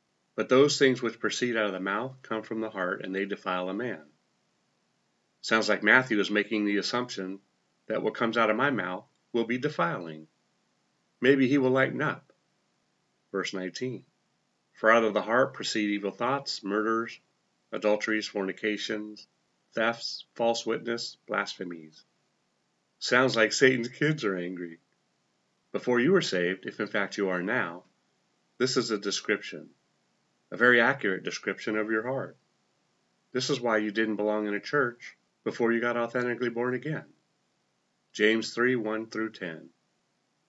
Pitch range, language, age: 100-125 Hz, English, 40-59